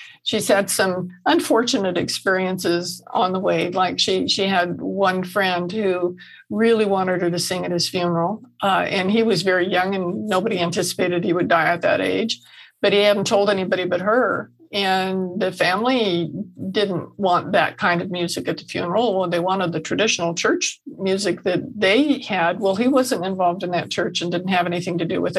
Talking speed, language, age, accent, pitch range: 190 wpm, English, 50-69, American, 185-230 Hz